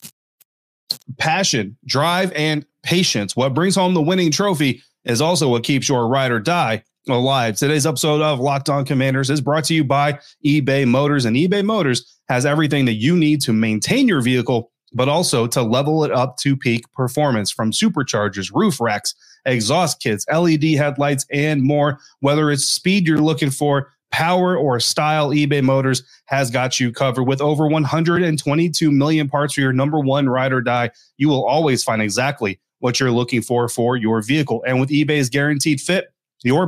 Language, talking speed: English, 175 wpm